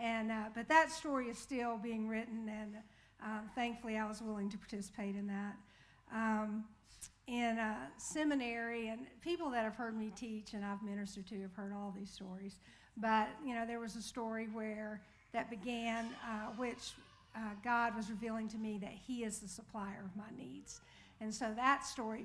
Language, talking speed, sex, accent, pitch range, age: English, 185 wpm, female, American, 210-235 Hz, 60-79